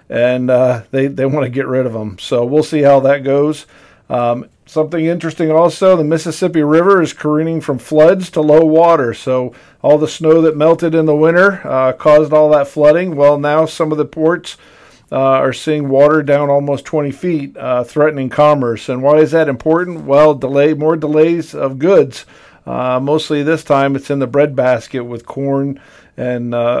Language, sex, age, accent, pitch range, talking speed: English, male, 50-69, American, 135-160 Hz, 190 wpm